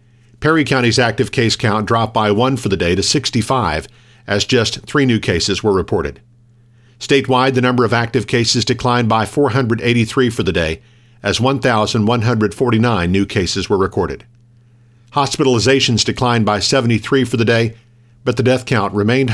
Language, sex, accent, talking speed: English, male, American, 155 wpm